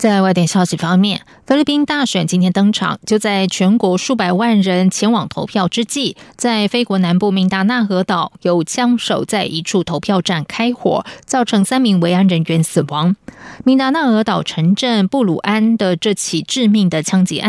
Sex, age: female, 20-39